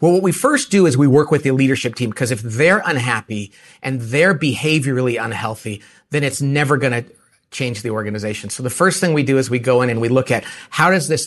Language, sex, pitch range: English, male, 120-165 Hz